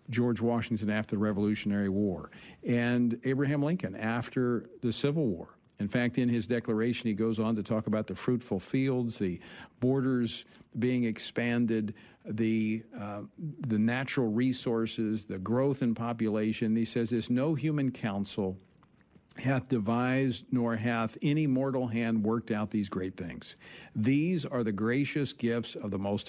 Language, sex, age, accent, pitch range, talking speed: English, male, 50-69, American, 110-135 Hz, 150 wpm